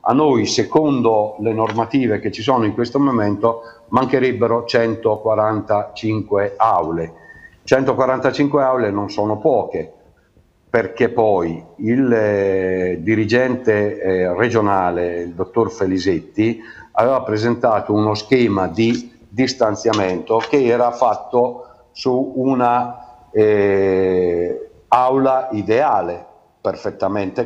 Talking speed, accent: 90 wpm, native